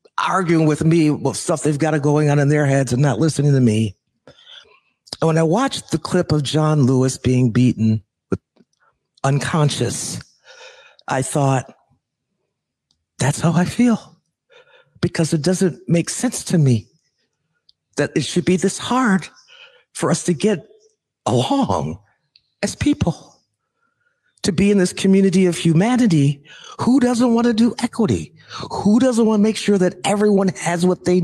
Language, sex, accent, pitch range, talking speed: English, male, American, 135-195 Hz, 150 wpm